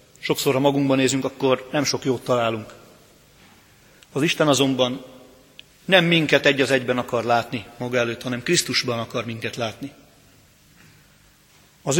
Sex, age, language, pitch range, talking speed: male, 40-59, Hungarian, 120-145 Hz, 135 wpm